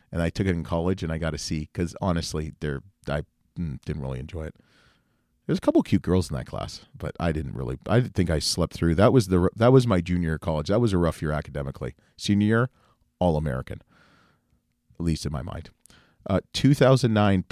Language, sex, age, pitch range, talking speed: English, male, 40-59, 85-115 Hz, 225 wpm